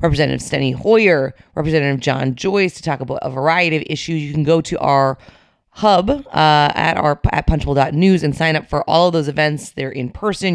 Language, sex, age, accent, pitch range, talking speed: English, female, 30-49, American, 140-170 Hz, 200 wpm